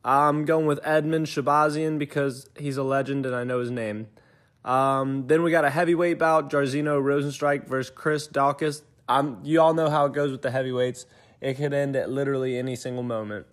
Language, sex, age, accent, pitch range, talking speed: English, male, 20-39, American, 125-155 Hz, 195 wpm